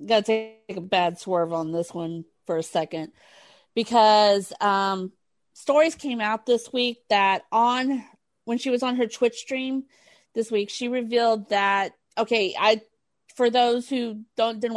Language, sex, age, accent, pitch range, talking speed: English, female, 40-59, American, 195-245 Hz, 160 wpm